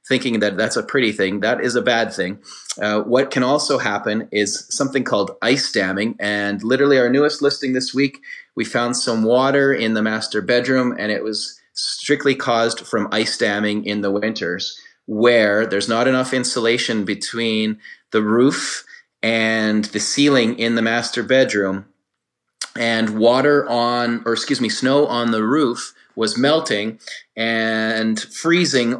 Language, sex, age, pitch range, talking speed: English, male, 30-49, 105-125 Hz, 155 wpm